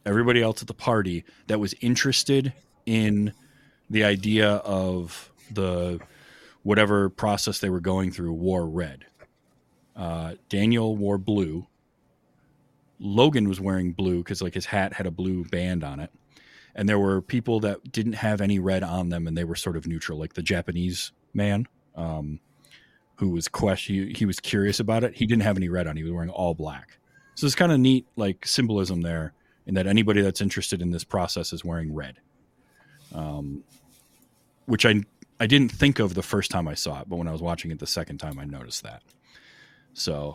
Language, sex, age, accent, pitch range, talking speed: English, male, 30-49, American, 85-110 Hz, 185 wpm